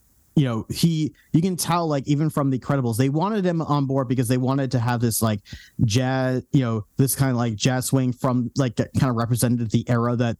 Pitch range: 115-145 Hz